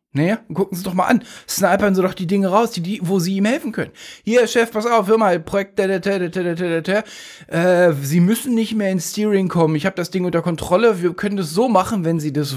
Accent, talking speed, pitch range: German, 265 wpm, 140-205 Hz